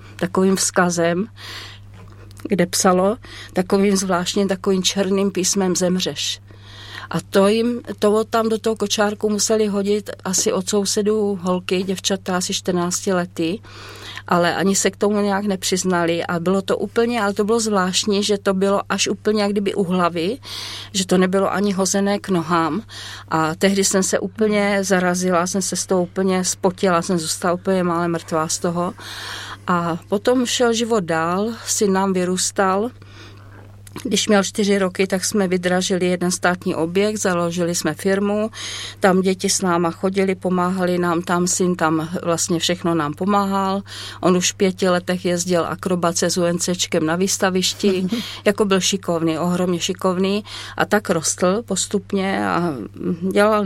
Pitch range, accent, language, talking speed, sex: 170-200 Hz, native, Czech, 150 wpm, female